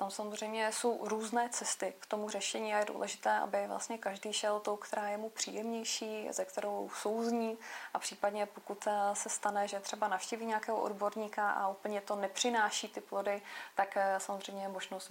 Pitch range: 195-220 Hz